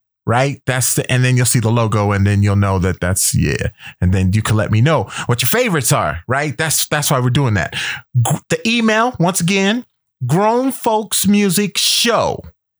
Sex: male